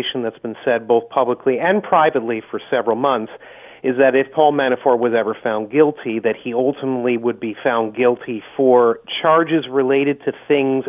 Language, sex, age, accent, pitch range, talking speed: English, male, 40-59, American, 120-145 Hz, 170 wpm